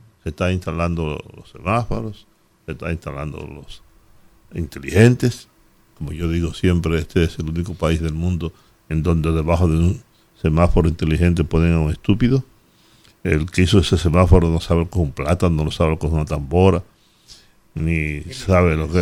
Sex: male